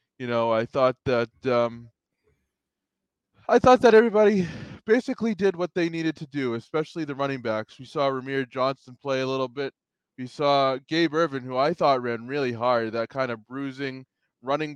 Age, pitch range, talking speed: 20-39, 125-150 Hz, 180 wpm